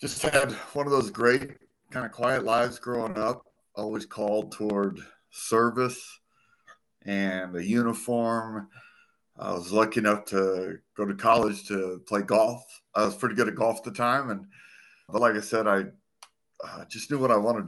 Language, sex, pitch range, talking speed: English, male, 95-120 Hz, 175 wpm